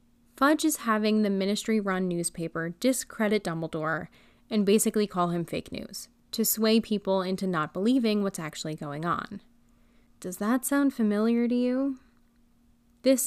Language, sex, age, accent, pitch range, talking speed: English, female, 20-39, American, 180-230 Hz, 140 wpm